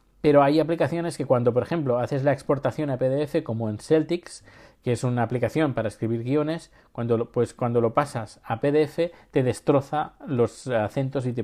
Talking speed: 180 wpm